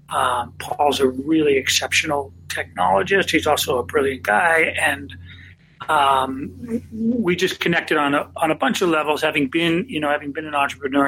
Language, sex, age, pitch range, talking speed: English, male, 40-59, 130-160 Hz, 170 wpm